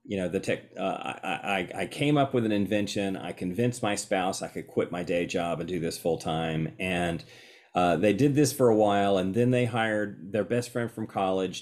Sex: male